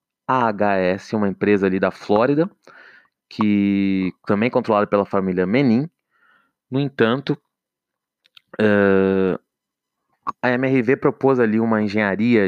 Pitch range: 100-120 Hz